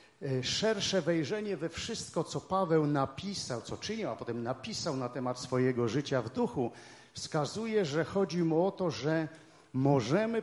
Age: 50-69